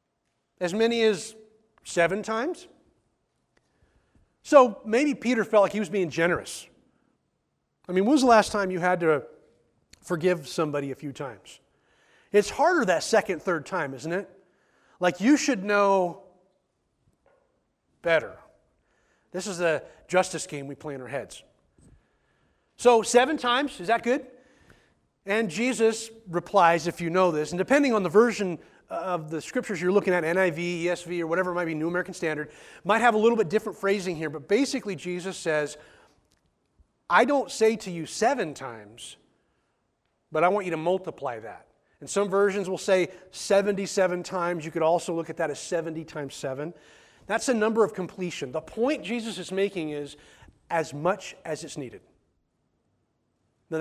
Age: 30-49